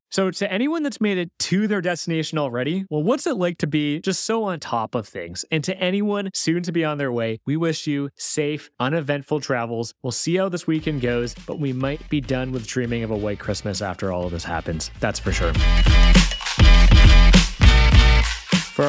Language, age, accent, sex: English, 30-49, American, male